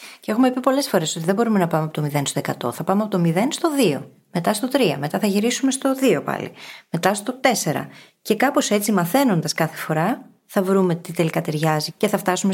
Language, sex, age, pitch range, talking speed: Greek, female, 20-39, 165-235 Hz, 230 wpm